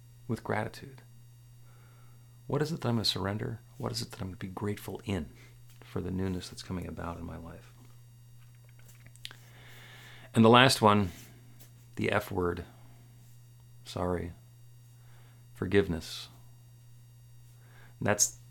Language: English